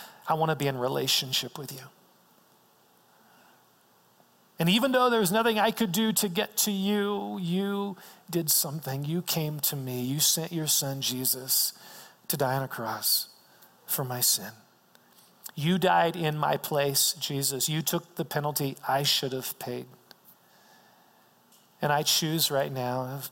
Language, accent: English, American